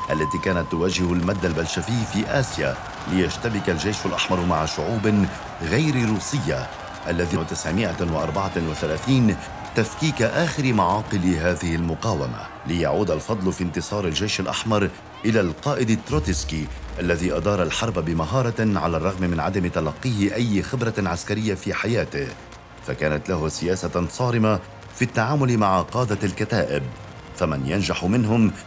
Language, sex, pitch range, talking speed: Arabic, male, 85-115 Hz, 115 wpm